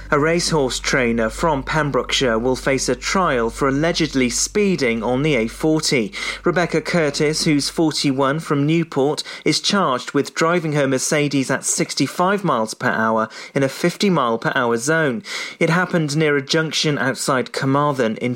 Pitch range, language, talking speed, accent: 125-160 Hz, English, 155 wpm, British